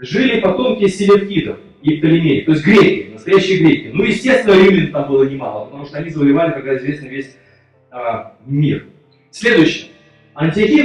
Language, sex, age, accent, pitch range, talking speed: Russian, male, 30-49, native, 155-200 Hz, 150 wpm